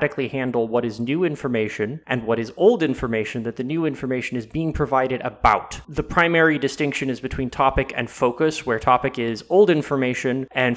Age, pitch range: 20-39, 125-165 Hz